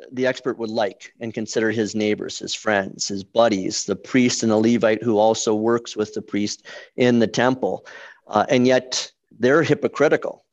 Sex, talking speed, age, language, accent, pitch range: male, 175 wpm, 40-59, English, American, 110-130 Hz